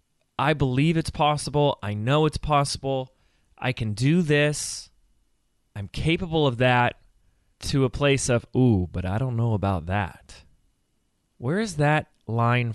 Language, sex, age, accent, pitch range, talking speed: English, male, 20-39, American, 110-150 Hz, 145 wpm